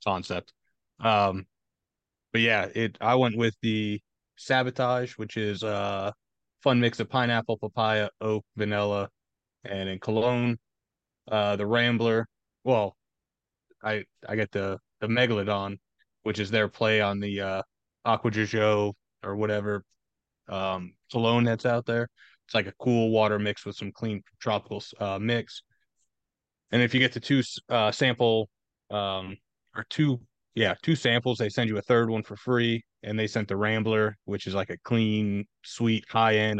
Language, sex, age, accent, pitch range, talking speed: English, male, 20-39, American, 105-120 Hz, 155 wpm